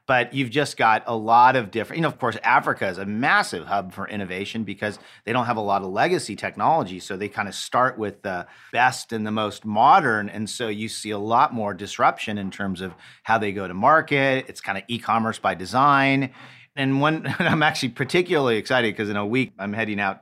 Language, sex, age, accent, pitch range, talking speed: English, male, 40-59, American, 95-120 Hz, 225 wpm